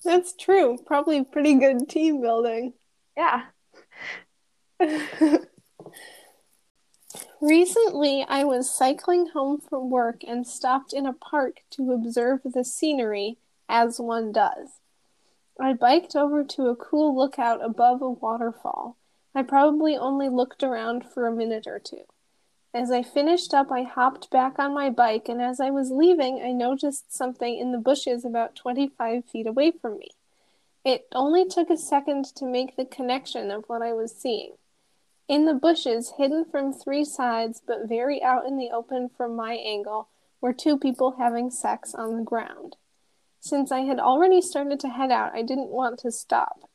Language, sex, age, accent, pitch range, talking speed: English, female, 10-29, American, 240-290 Hz, 160 wpm